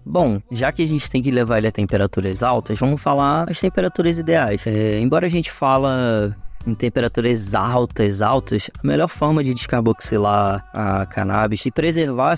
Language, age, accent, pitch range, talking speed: Portuguese, 20-39, Brazilian, 110-145 Hz, 170 wpm